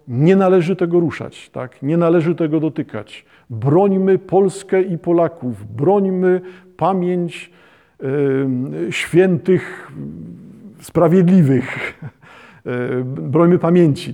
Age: 50-69